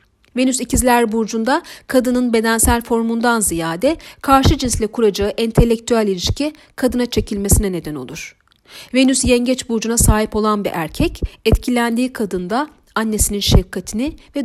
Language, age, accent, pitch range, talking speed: Turkish, 40-59, native, 195-250 Hz, 115 wpm